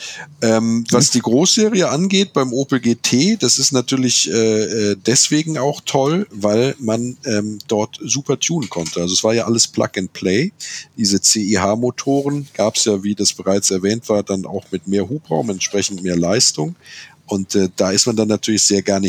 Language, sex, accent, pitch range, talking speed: German, male, German, 95-110 Hz, 180 wpm